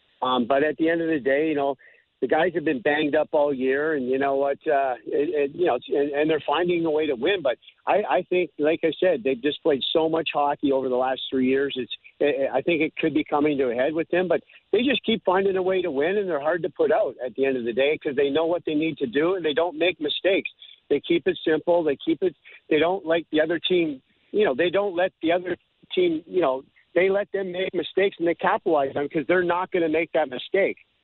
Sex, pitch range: male, 140-180 Hz